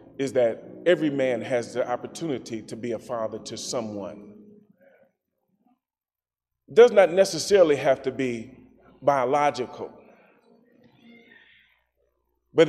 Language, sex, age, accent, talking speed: English, male, 30-49, American, 105 wpm